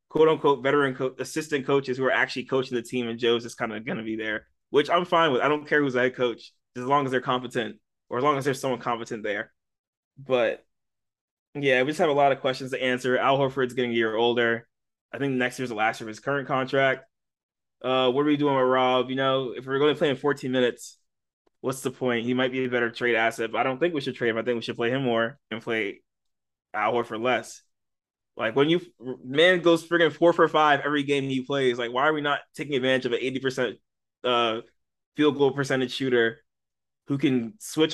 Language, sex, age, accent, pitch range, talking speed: English, male, 20-39, American, 125-150 Hz, 240 wpm